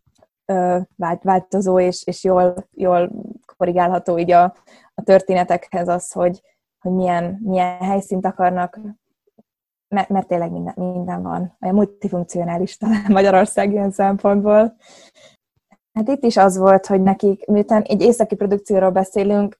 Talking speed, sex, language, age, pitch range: 115 wpm, female, Hungarian, 20-39, 180-210 Hz